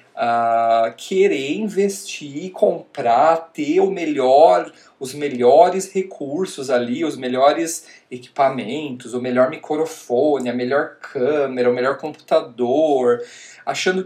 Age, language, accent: 40-59, Portuguese, Brazilian